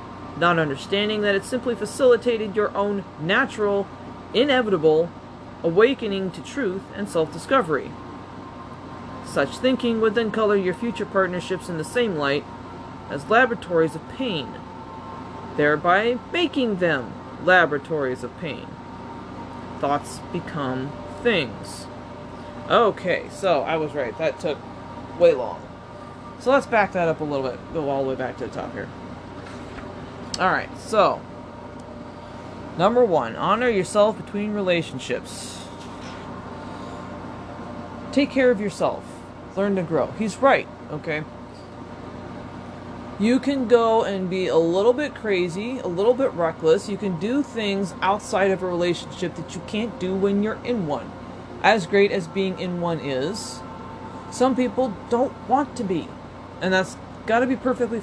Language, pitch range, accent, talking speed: English, 160-235 Hz, American, 135 wpm